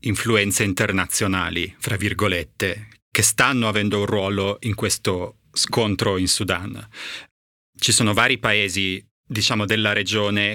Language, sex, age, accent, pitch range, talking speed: Italian, male, 30-49, native, 100-115 Hz, 120 wpm